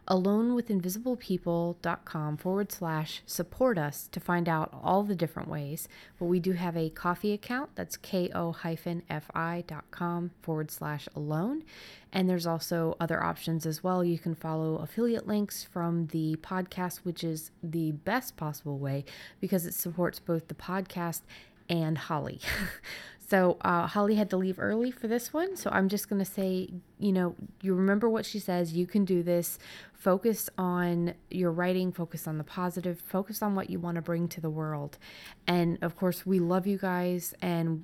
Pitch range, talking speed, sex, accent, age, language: 165-185 Hz, 175 wpm, female, American, 30-49, English